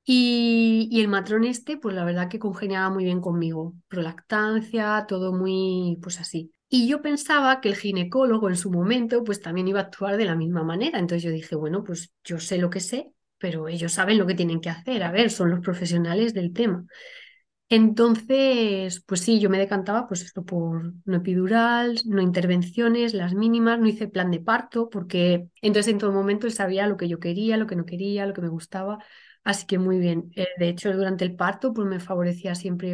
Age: 30-49